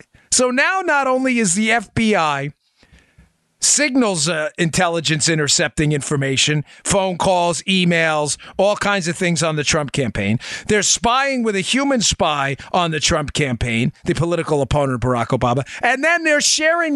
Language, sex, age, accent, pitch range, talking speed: English, male, 40-59, American, 130-190 Hz, 150 wpm